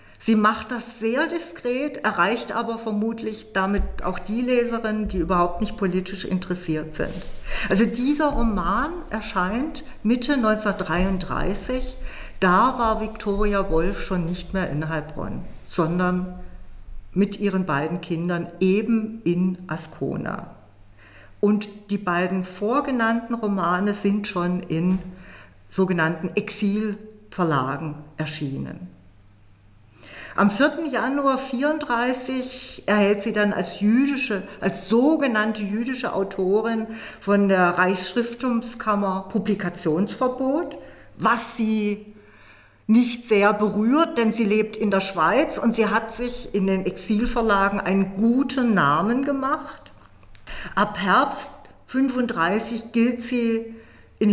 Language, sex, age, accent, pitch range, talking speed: German, female, 50-69, German, 180-235 Hz, 105 wpm